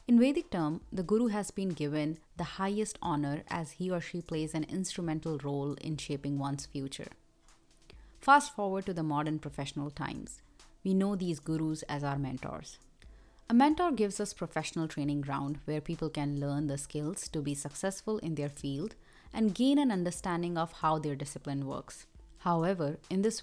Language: English